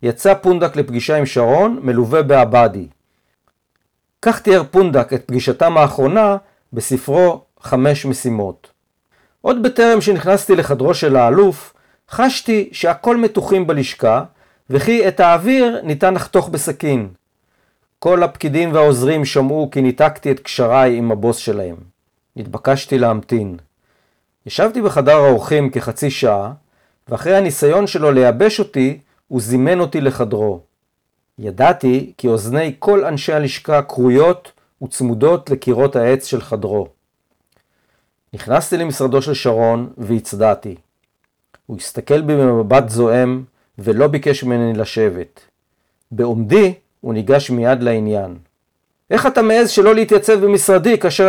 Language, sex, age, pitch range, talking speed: Hebrew, male, 50-69, 120-180 Hz, 115 wpm